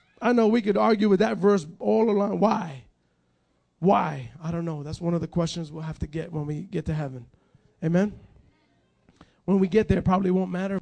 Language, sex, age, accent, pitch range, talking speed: English, male, 30-49, American, 180-270 Hz, 210 wpm